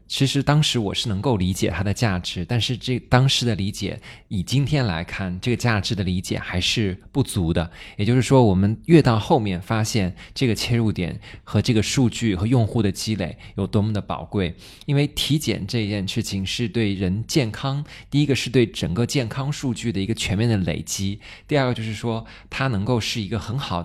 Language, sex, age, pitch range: Chinese, male, 20-39, 100-130 Hz